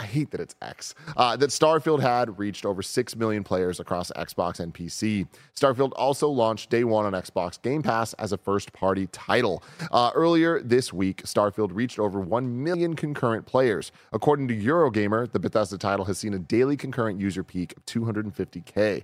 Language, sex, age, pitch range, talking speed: English, male, 30-49, 100-130 Hz, 185 wpm